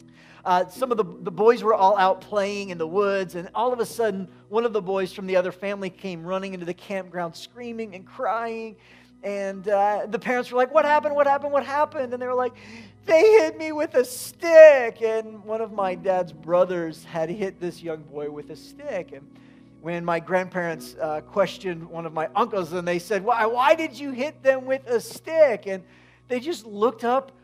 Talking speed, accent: 210 wpm, American